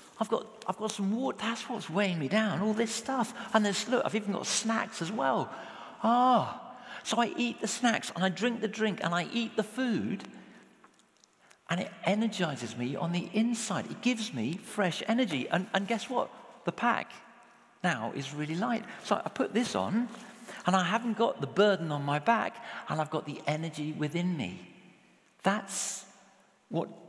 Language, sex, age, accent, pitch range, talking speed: English, male, 50-69, British, 150-220 Hz, 190 wpm